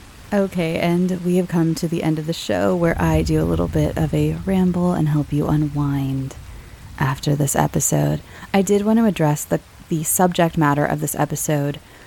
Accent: American